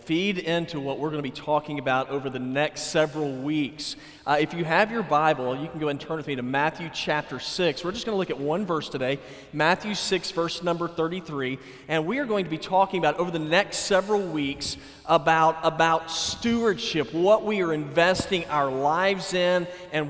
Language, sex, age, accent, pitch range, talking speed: English, male, 40-59, American, 155-205 Hz, 205 wpm